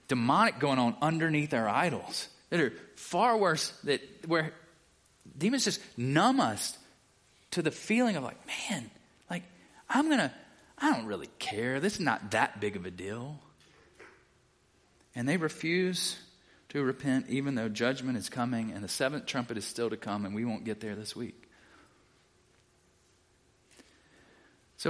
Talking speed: 150 wpm